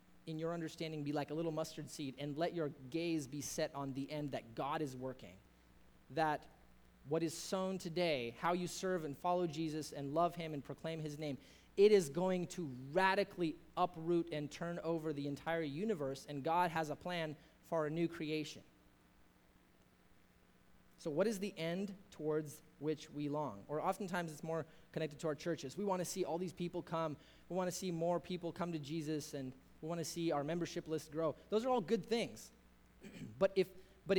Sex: male